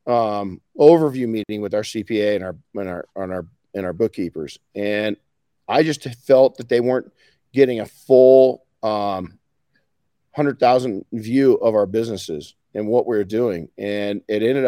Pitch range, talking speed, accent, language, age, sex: 105-135 Hz, 160 wpm, American, English, 40-59, male